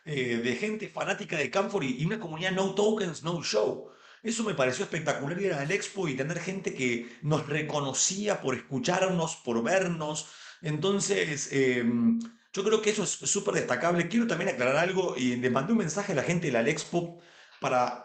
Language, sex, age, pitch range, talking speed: Spanish, male, 40-59, 135-185 Hz, 185 wpm